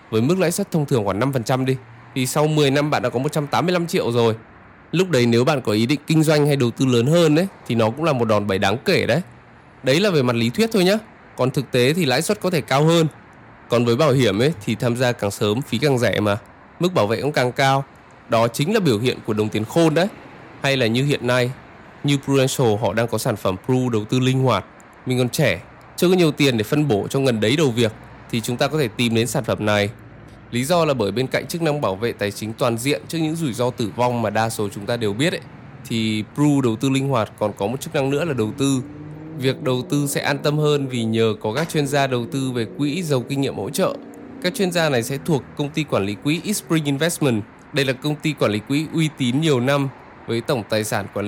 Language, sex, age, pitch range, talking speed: Vietnamese, male, 20-39, 115-150 Hz, 265 wpm